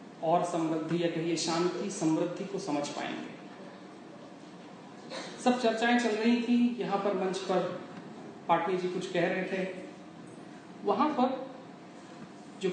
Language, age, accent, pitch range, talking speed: Hindi, 40-59, native, 175-235 Hz, 125 wpm